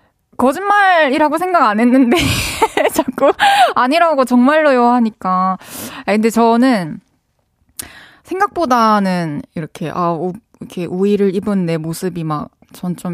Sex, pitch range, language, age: female, 180-270 Hz, Korean, 20-39